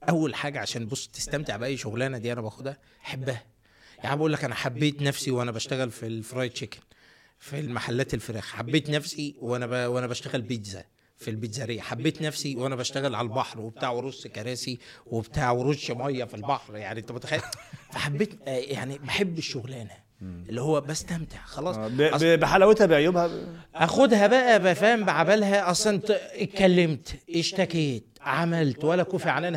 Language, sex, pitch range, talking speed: Arabic, male, 120-160 Hz, 150 wpm